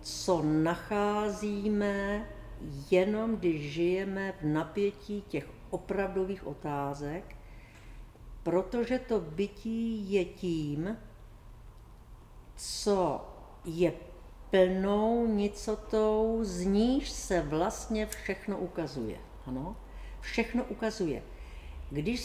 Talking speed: 80 wpm